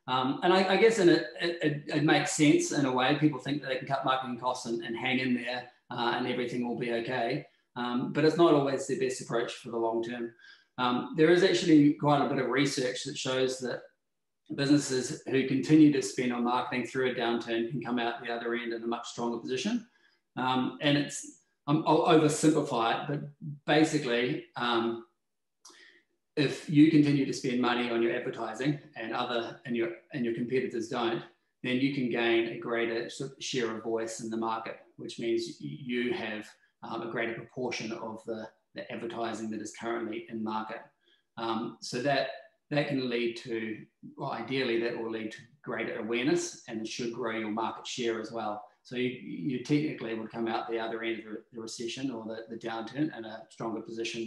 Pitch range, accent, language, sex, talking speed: 115-145 Hz, Australian, English, male, 190 wpm